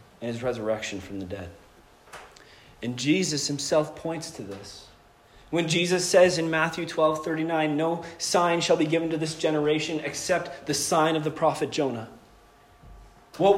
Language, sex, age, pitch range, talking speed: English, male, 30-49, 150-200 Hz, 155 wpm